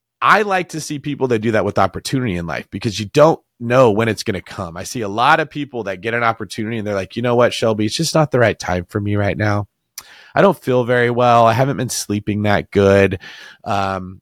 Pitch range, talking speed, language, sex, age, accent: 105-155 Hz, 255 wpm, English, male, 30-49, American